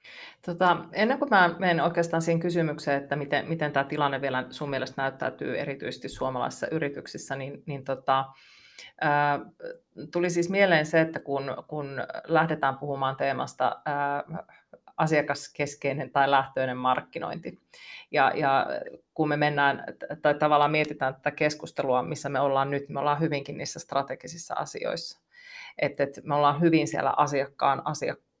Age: 30-49